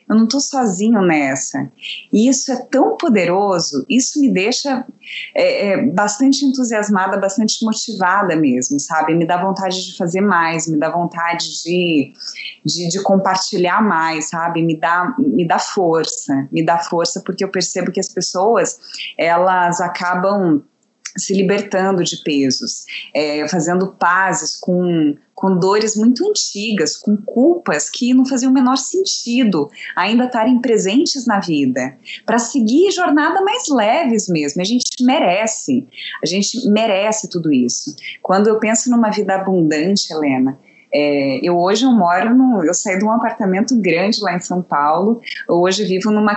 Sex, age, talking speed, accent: female, 20-39, 150 wpm, Brazilian